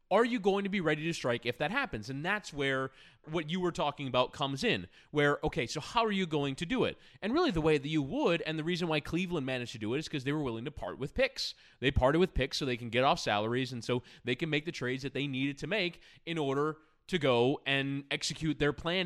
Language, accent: English, American